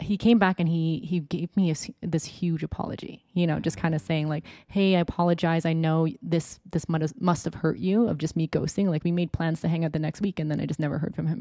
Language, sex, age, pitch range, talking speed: English, female, 20-39, 160-185 Hz, 285 wpm